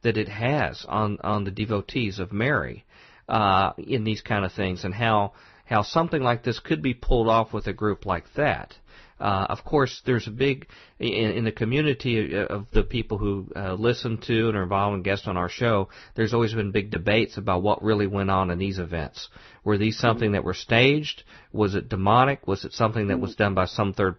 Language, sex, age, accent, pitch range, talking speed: English, male, 40-59, American, 100-120 Hz, 220 wpm